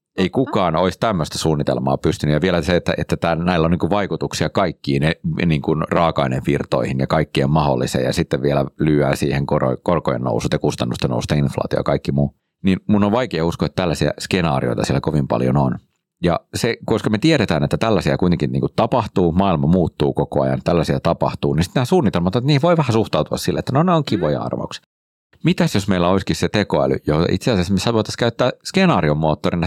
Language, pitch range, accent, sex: Finnish, 75-115 Hz, native, male